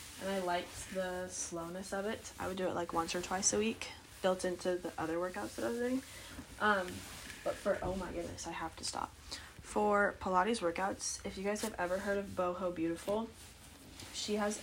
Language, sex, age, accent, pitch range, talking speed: English, female, 10-29, American, 170-200 Hz, 205 wpm